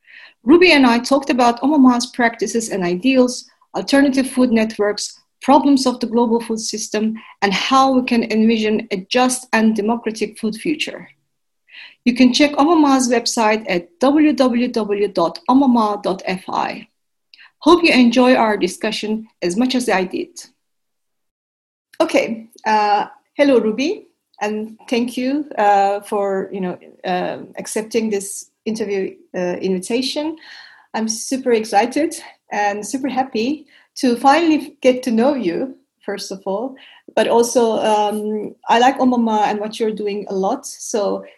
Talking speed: 130 wpm